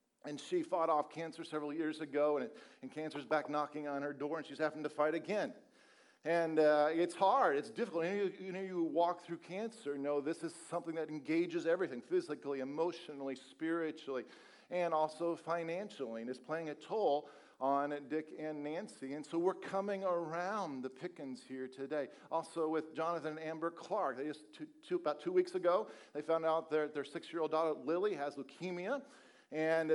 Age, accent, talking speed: 50-69, American, 190 wpm